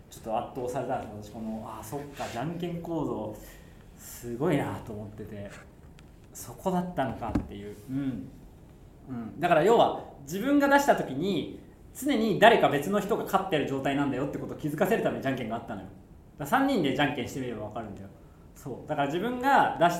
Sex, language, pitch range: male, Japanese, 115-170 Hz